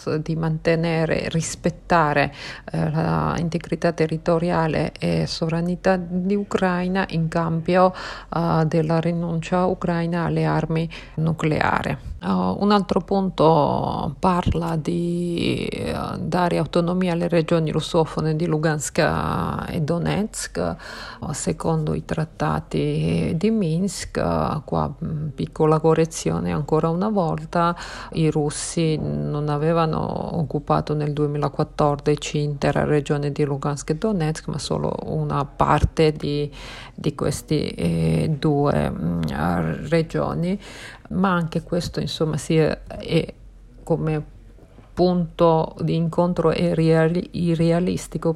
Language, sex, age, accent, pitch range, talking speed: Italian, female, 50-69, native, 150-170 Hz, 100 wpm